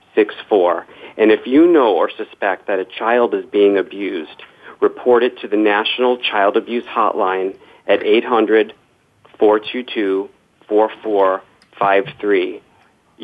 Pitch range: 100-125 Hz